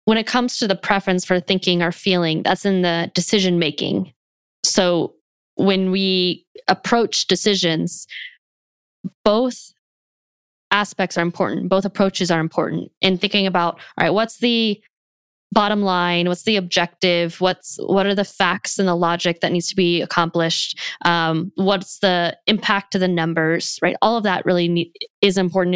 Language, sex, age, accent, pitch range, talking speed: English, female, 10-29, American, 170-195 Hz, 155 wpm